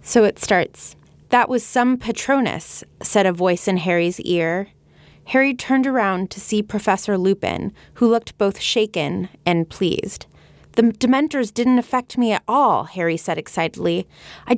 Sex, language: female, English